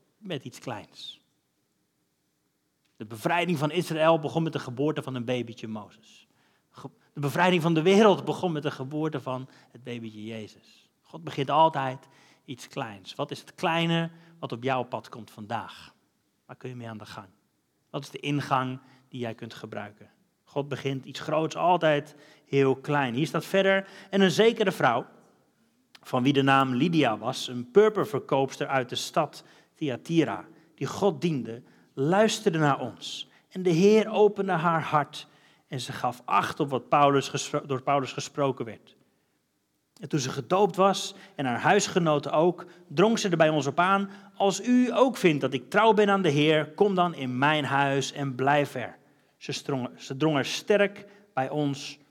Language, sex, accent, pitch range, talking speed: Dutch, male, Dutch, 135-185 Hz, 175 wpm